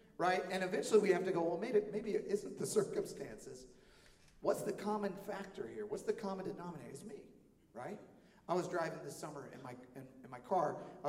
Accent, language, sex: American, English, male